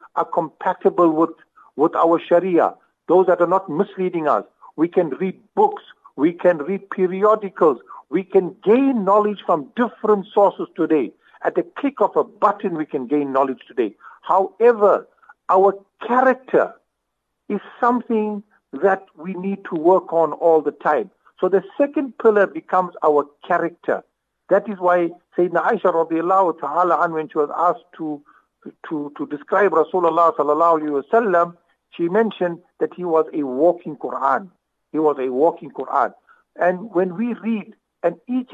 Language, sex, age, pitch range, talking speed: English, male, 50-69, 165-215 Hz, 150 wpm